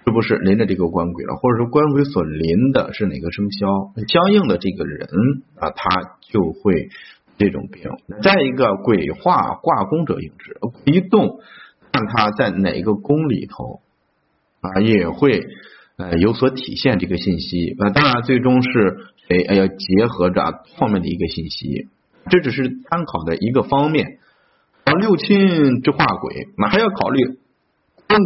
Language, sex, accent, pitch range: Chinese, male, native, 90-145 Hz